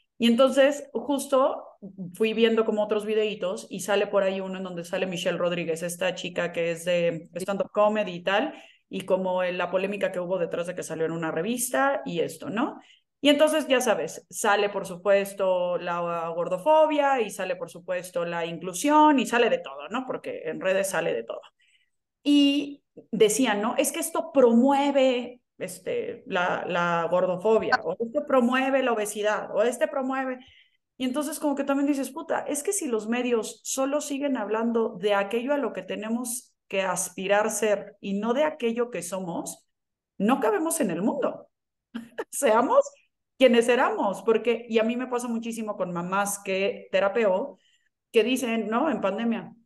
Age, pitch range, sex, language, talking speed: 30-49, 190-275 Hz, female, Spanish, 170 wpm